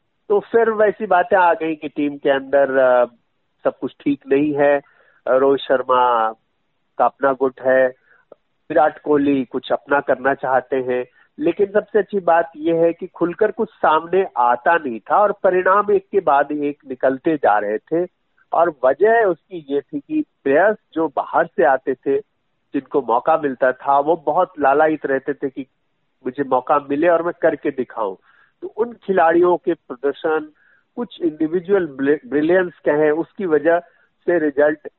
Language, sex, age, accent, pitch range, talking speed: Hindi, male, 50-69, native, 130-175 Hz, 160 wpm